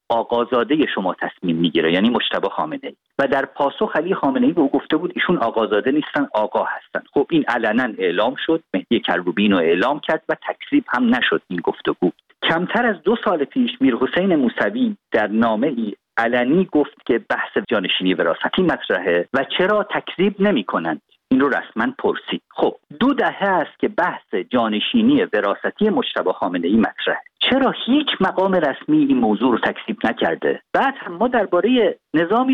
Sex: male